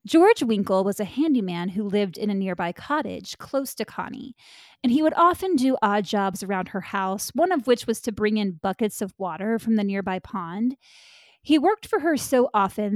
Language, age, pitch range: English, 20-39, 210-275 Hz